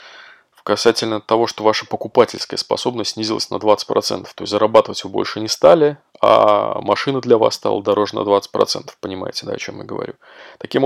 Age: 20-39